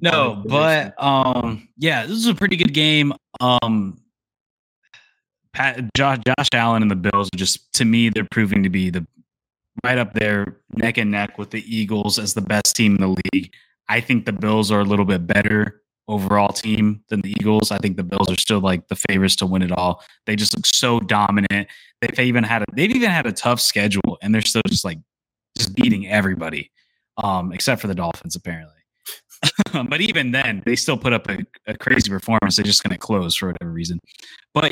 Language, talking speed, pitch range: English, 205 wpm, 100-125 Hz